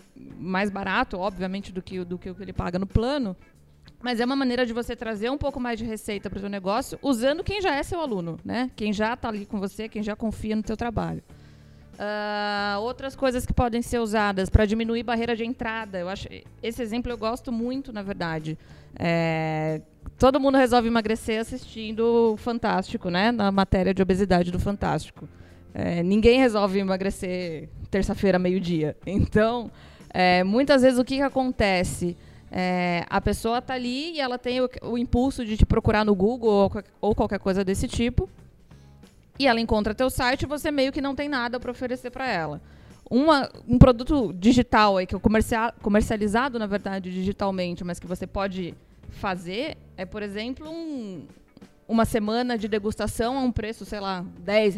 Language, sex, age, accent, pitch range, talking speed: Portuguese, female, 20-39, Brazilian, 190-245 Hz, 175 wpm